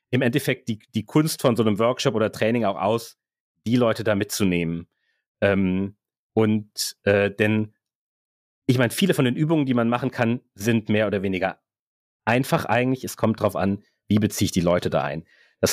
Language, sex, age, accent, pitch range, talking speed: German, male, 30-49, German, 100-125 Hz, 185 wpm